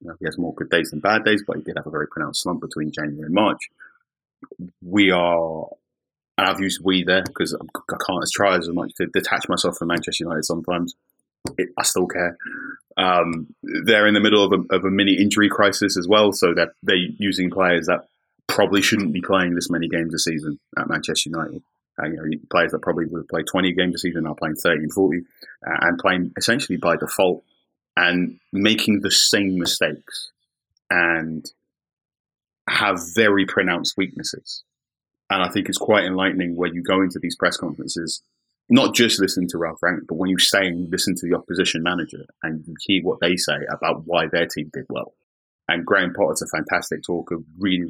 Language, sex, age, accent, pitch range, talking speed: English, male, 30-49, British, 85-95 Hz, 195 wpm